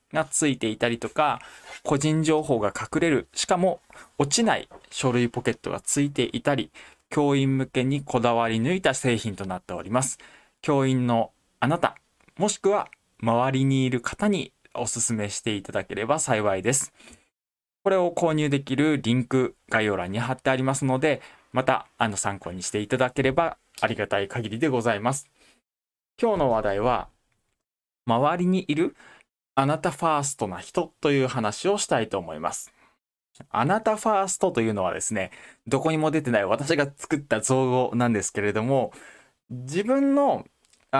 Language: Japanese